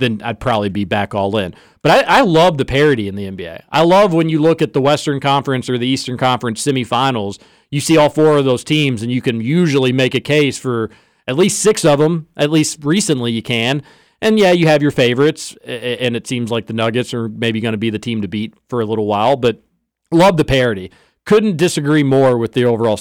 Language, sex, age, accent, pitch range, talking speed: English, male, 40-59, American, 120-155 Hz, 235 wpm